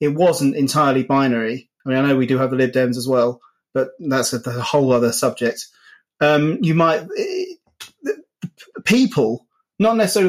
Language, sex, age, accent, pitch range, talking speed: English, male, 30-49, British, 130-170 Hz, 165 wpm